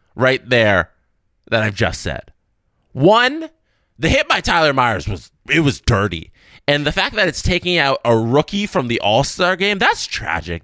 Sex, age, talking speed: male, 20-39, 175 wpm